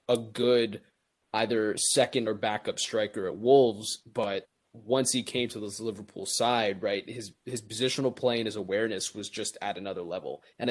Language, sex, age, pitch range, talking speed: English, male, 20-39, 110-145 Hz, 175 wpm